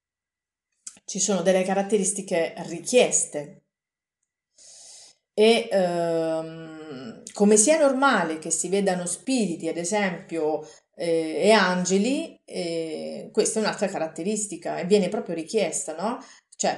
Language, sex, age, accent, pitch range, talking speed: Italian, female, 30-49, native, 165-205 Hz, 105 wpm